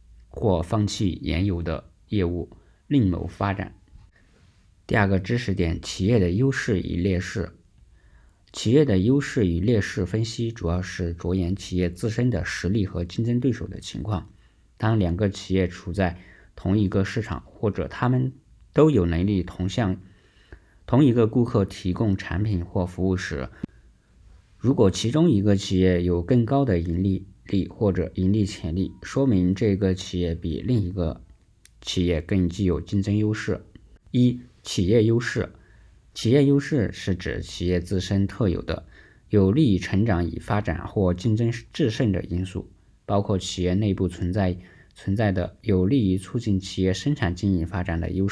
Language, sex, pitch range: Chinese, male, 90-110 Hz